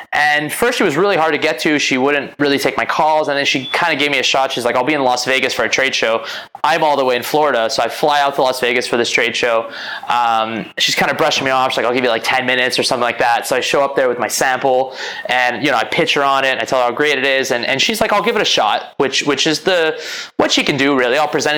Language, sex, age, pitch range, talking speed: English, male, 20-39, 125-150 Hz, 320 wpm